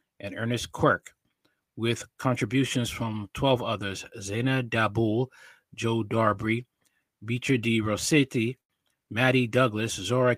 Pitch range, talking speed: 110-130 Hz, 105 wpm